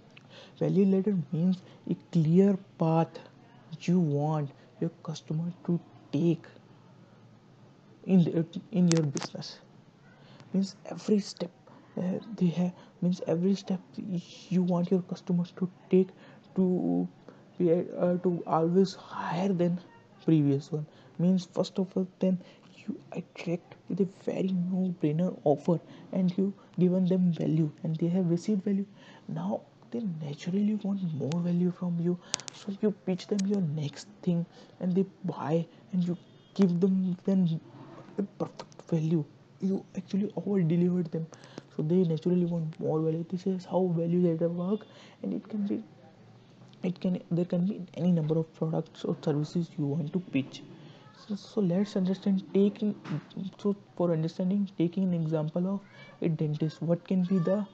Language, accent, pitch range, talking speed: English, Indian, 165-190 Hz, 150 wpm